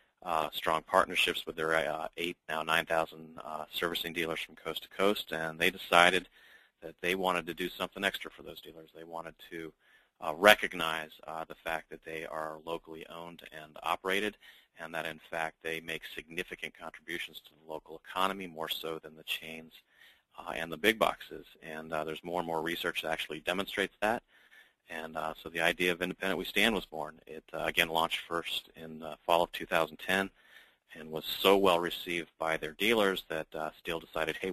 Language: English